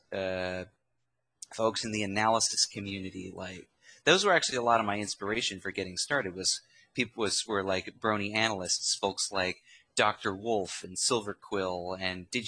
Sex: male